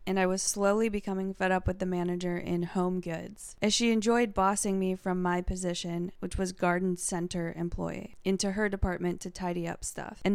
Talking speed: 195 wpm